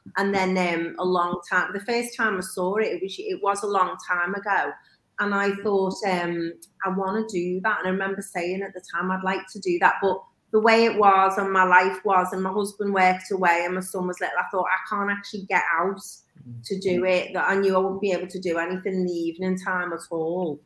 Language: English